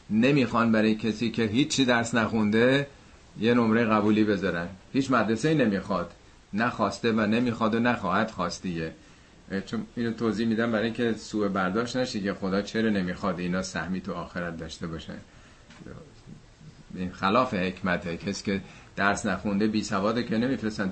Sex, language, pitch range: male, Persian, 90-115 Hz